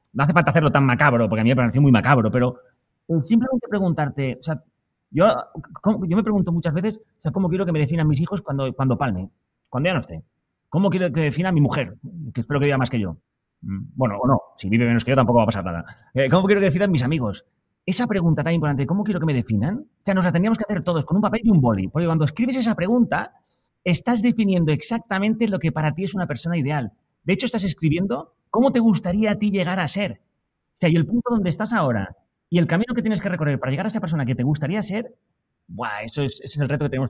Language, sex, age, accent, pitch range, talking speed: Spanish, male, 30-49, Spanish, 135-195 Hz, 255 wpm